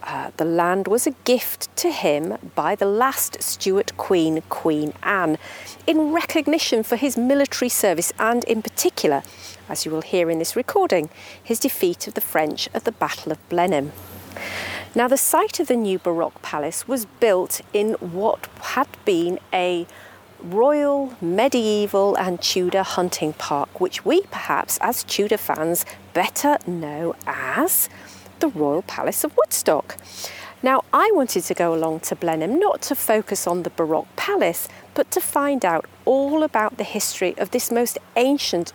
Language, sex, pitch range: English, female, 170-265 Hz